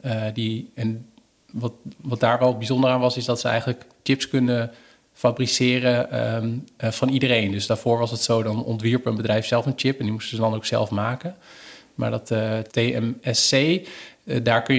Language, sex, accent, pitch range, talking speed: Dutch, male, Dutch, 110-130 Hz, 195 wpm